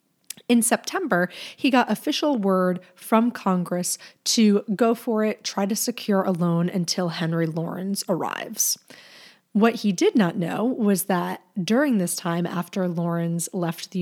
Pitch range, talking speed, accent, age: 175-225 Hz, 150 wpm, American, 30-49